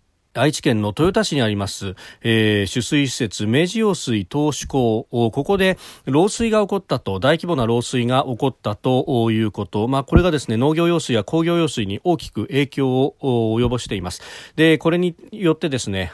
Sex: male